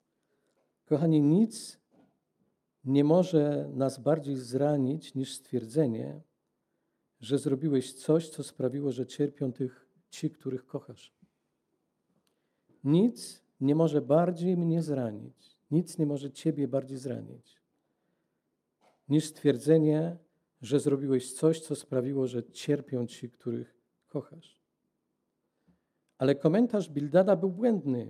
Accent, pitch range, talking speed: native, 140-170 Hz, 105 wpm